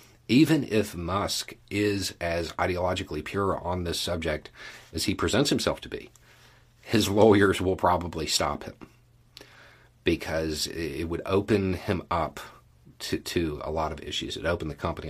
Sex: male